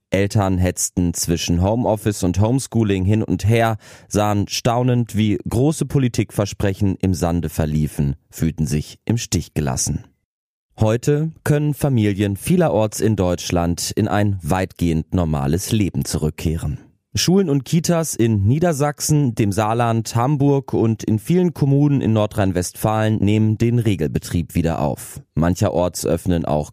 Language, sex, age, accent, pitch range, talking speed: German, male, 30-49, German, 90-125 Hz, 125 wpm